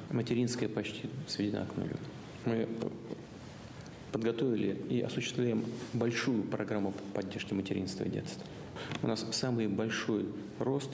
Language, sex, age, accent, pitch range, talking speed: Russian, male, 40-59, native, 105-120 Hz, 105 wpm